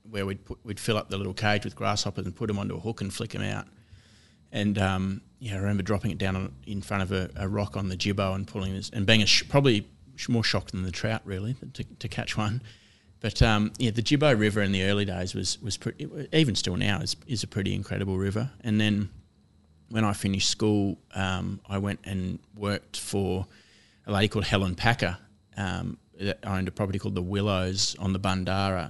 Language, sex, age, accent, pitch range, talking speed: English, male, 30-49, Australian, 95-105 Hz, 225 wpm